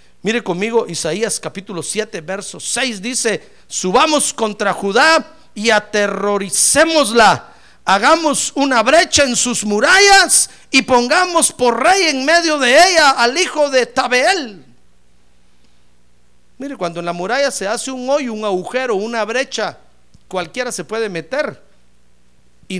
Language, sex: Spanish, male